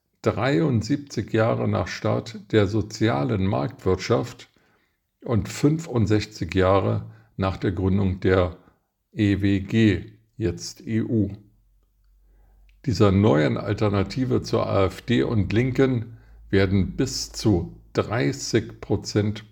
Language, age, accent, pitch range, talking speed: German, 50-69, German, 95-110 Hz, 85 wpm